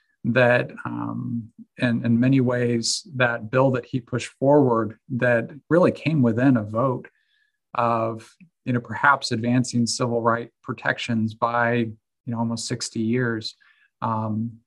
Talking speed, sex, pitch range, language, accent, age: 135 wpm, male, 115-125 Hz, English, American, 40-59